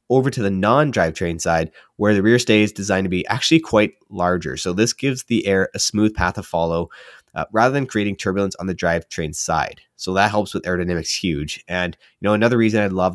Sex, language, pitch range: male, English, 90-115 Hz